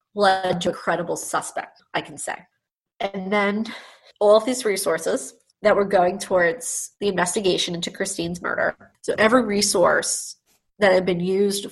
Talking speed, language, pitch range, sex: 155 wpm, English, 170-190 Hz, female